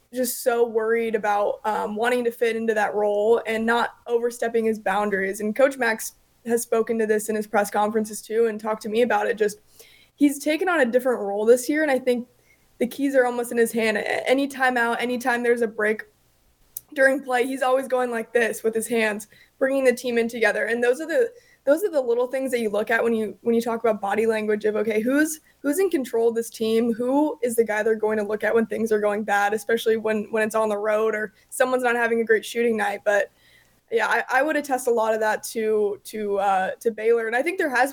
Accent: American